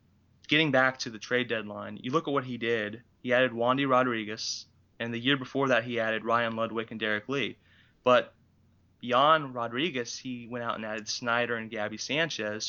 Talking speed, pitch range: 190 wpm, 110-130 Hz